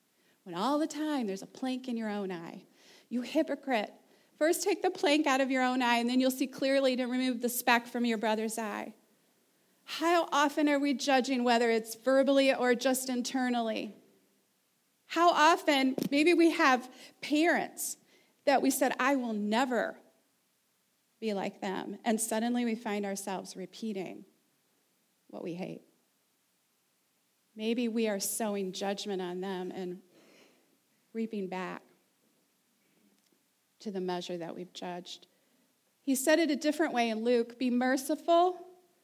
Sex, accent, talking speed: female, American, 150 wpm